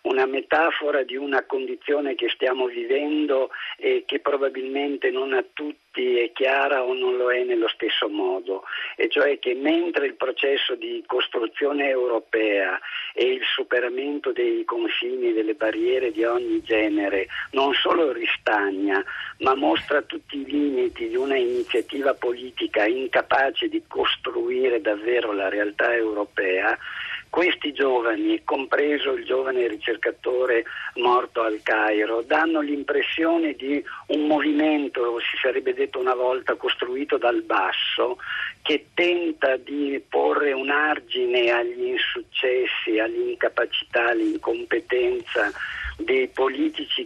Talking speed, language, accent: 120 wpm, Italian, native